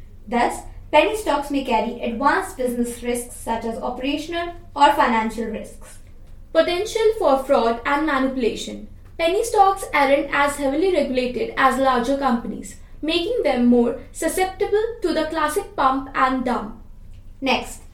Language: English